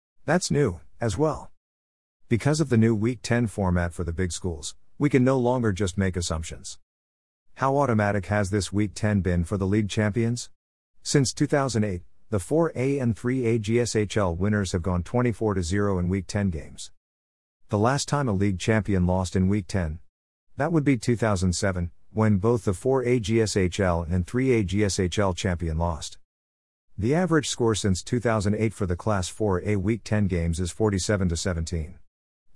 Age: 50-69